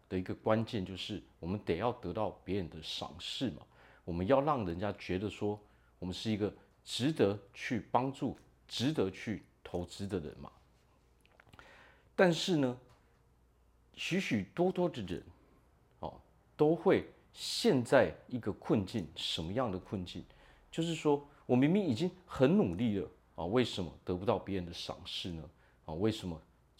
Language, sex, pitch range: Chinese, male, 90-125 Hz